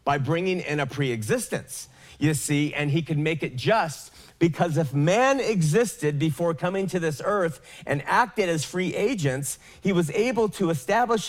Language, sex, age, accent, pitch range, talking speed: English, male, 40-59, American, 135-170 Hz, 170 wpm